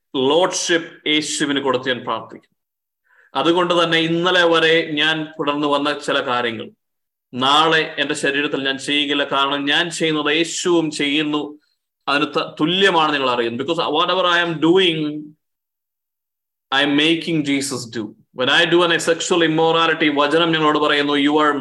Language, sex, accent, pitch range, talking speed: Malayalam, male, native, 140-170 Hz, 135 wpm